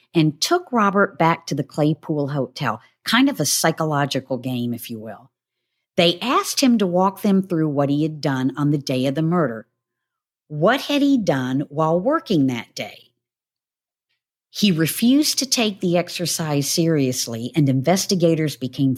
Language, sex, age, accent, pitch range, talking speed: English, female, 50-69, American, 130-175 Hz, 160 wpm